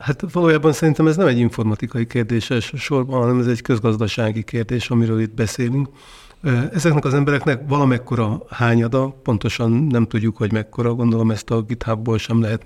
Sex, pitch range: male, 115-130 Hz